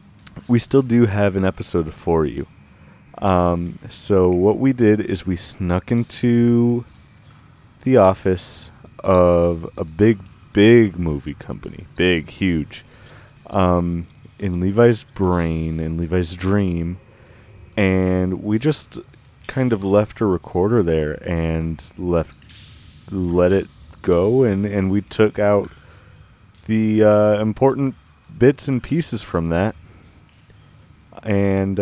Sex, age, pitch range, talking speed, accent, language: male, 30-49, 90-110 Hz, 115 wpm, American, English